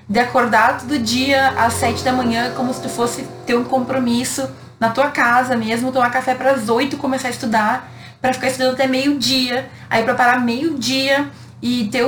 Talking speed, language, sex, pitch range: 205 wpm, Portuguese, female, 205-255 Hz